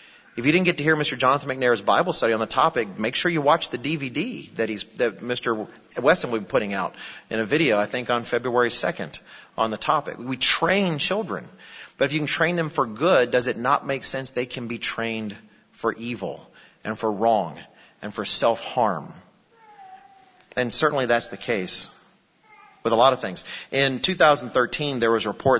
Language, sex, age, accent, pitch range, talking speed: English, male, 40-59, American, 110-145 Hz, 195 wpm